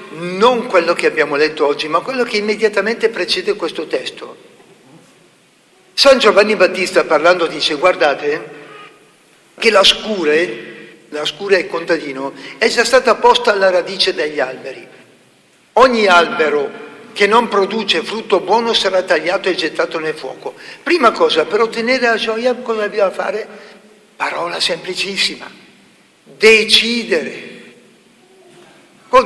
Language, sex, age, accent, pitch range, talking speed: Italian, male, 60-79, native, 195-295 Hz, 125 wpm